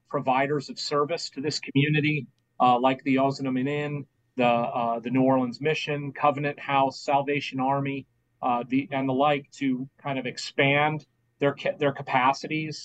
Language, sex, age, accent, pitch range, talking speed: English, male, 40-59, American, 125-150 Hz, 155 wpm